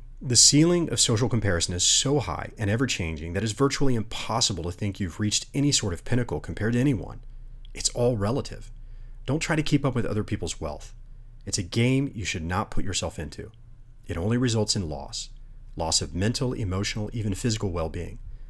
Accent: American